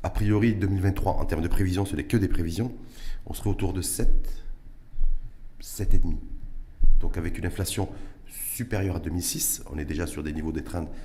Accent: French